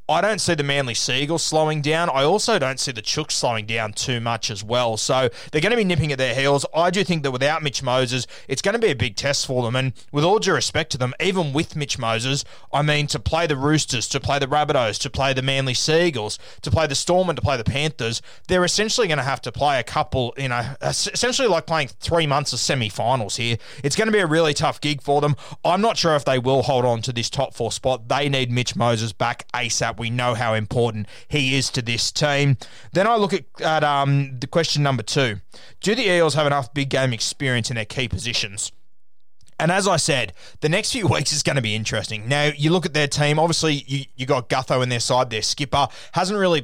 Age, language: 20-39, English